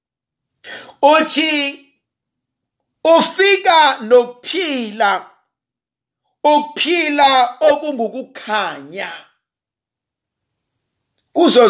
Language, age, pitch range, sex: English, 50-69, 145-220 Hz, male